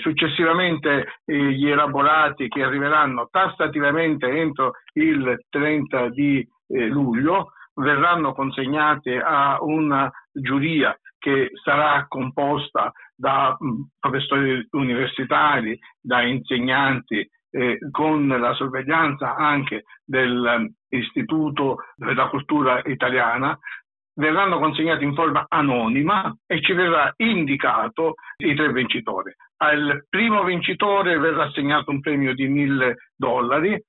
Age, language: 60-79, Italian